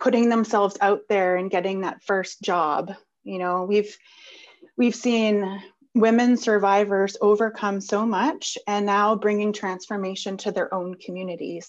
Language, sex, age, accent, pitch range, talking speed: English, female, 30-49, American, 195-235 Hz, 140 wpm